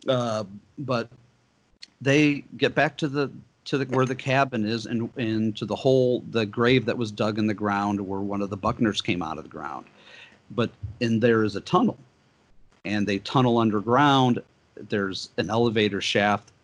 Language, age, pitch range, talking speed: English, 50-69, 105-130 Hz, 180 wpm